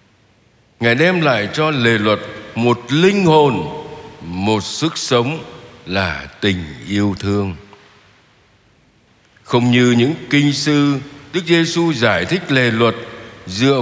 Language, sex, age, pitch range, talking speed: Vietnamese, male, 60-79, 100-145 Hz, 120 wpm